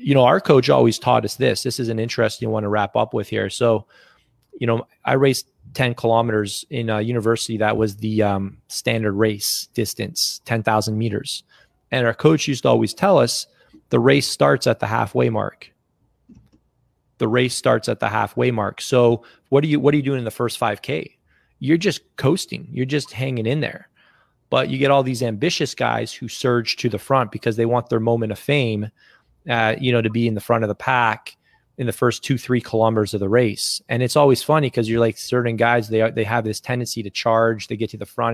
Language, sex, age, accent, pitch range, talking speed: English, male, 30-49, American, 110-135 Hz, 220 wpm